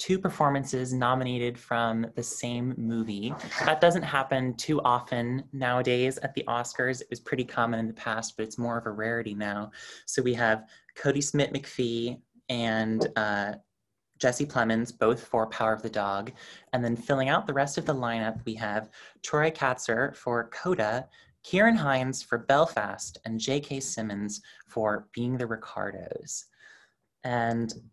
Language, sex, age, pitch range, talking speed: English, male, 20-39, 110-135 Hz, 155 wpm